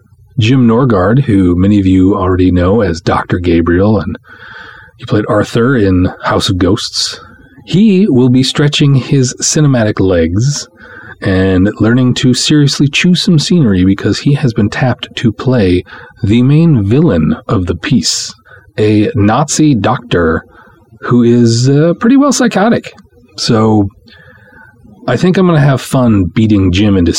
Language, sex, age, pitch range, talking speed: English, male, 40-59, 95-130 Hz, 145 wpm